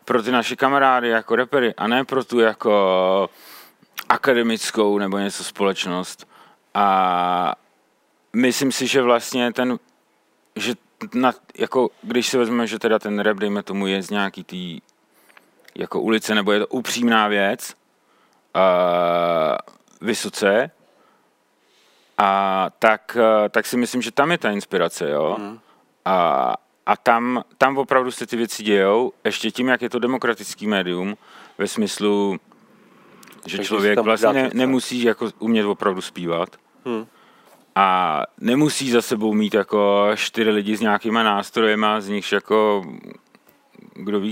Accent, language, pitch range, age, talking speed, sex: native, Czech, 100-125 Hz, 40-59, 135 wpm, male